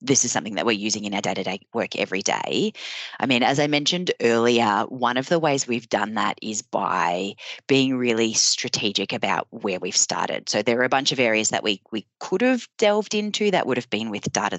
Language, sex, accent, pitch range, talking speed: English, female, Australian, 115-180 Hz, 220 wpm